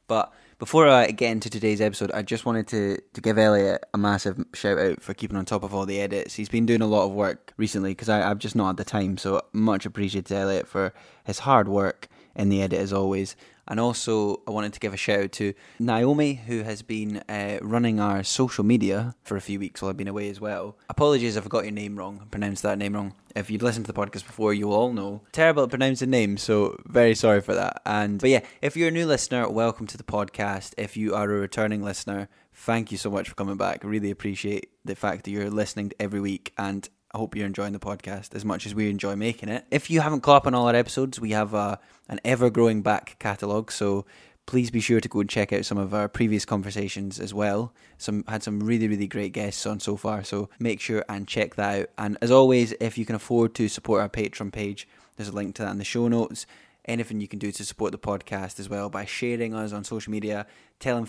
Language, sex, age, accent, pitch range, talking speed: English, male, 10-29, British, 100-115 Hz, 245 wpm